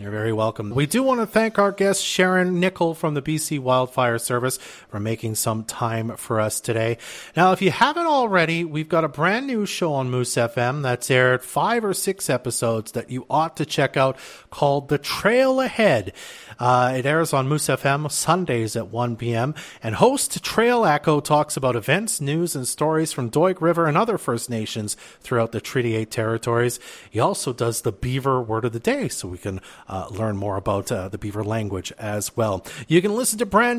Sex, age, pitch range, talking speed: male, 40-59, 115-160 Hz, 200 wpm